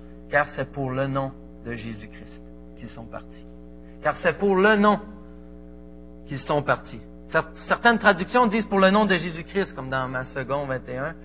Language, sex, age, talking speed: French, male, 40-59, 190 wpm